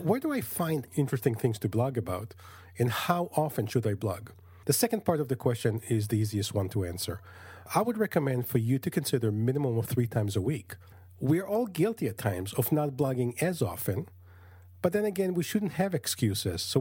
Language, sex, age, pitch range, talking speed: English, male, 40-59, 105-155 Hz, 205 wpm